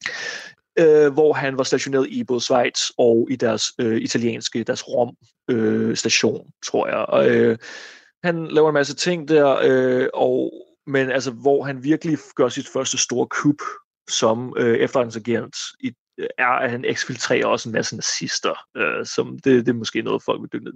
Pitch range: 125-170 Hz